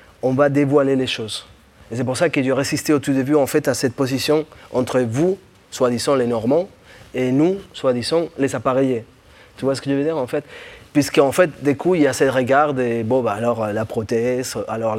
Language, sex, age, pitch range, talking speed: French, male, 20-39, 120-140 Hz, 235 wpm